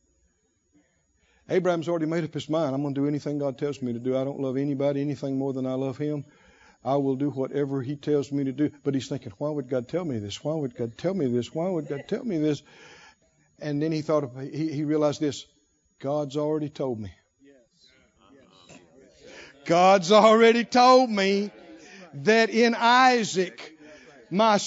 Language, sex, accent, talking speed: English, male, American, 180 wpm